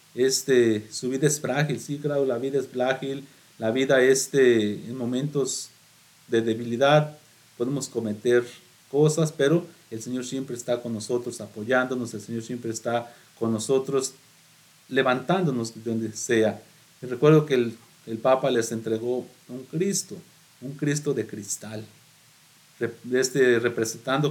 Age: 40-59